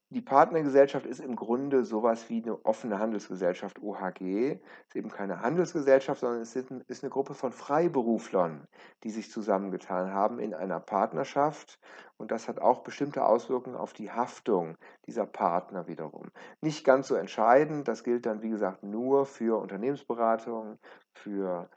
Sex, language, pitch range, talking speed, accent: male, German, 110-150 Hz, 150 wpm, German